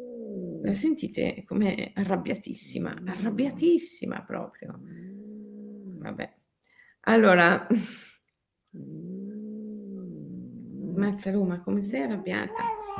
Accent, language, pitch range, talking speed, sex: native, Italian, 175-230 Hz, 55 wpm, female